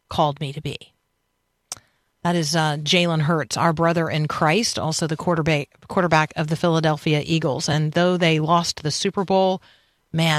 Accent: American